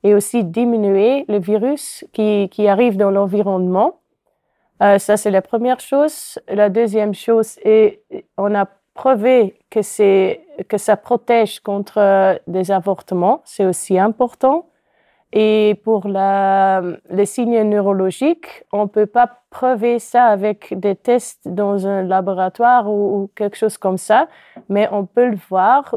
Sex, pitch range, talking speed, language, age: female, 200-255 Hz, 140 wpm, French, 20-39